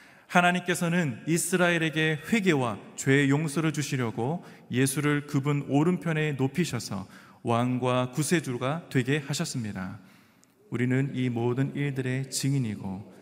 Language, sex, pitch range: Korean, male, 120-150 Hz